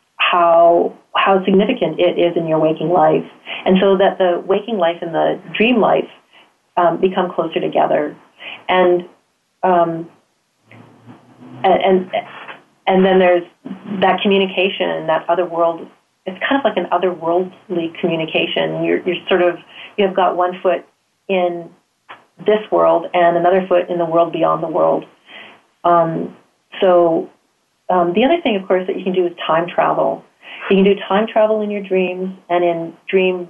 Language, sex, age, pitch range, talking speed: English, female, 30-49, 170-195 Hz, 155 wpm